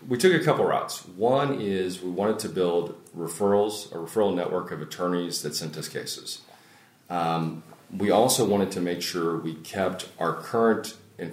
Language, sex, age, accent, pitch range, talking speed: English, male, 40-59, American, 80-90 Hz, 175 wpm